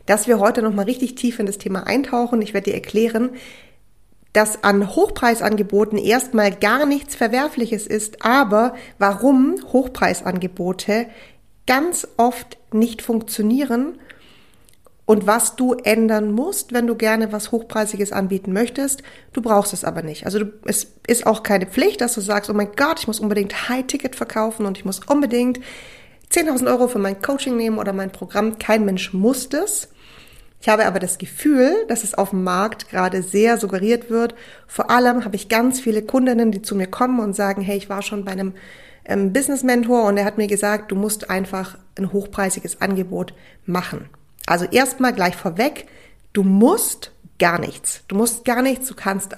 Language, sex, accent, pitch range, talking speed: German, female, German, 200-245 Hz, 170 wpm